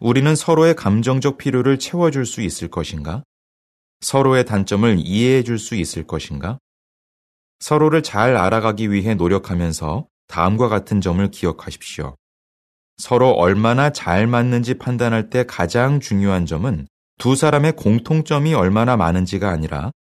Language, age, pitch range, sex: Korean, 30-49, 85-125 Hz, male